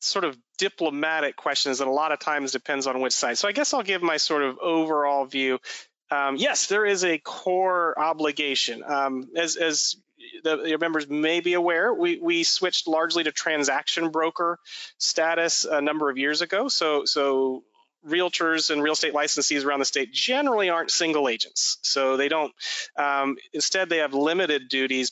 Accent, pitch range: American, 140-175 Hz